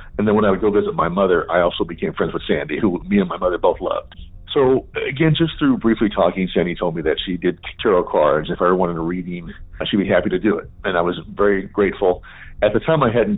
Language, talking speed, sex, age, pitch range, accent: English, 260 wpm, male, 50-69, 85-115 Hz, American